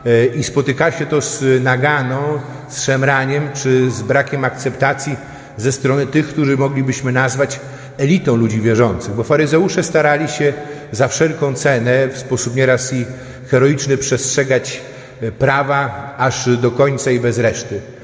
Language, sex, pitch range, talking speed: Polish, male, 125-145 Hz, 135 wpm